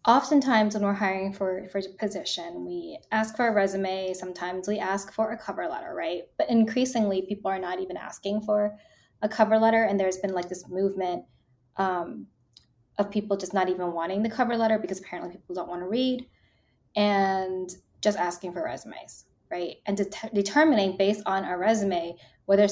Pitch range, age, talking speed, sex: 185-235 Hz, 10-29, 180 wpm, female